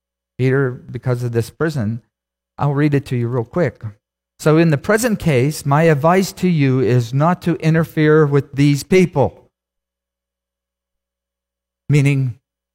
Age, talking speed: 50-69, 135 wpm